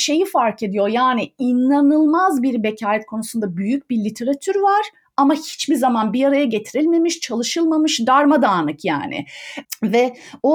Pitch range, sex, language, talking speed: 225-310 Hz, female, Turkish, 130 wpm